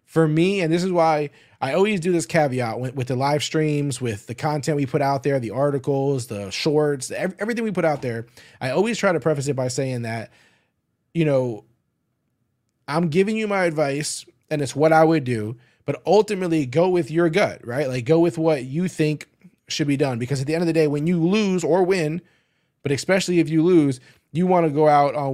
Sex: male